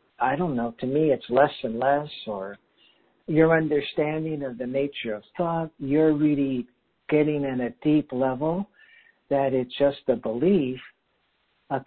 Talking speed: 150 wpm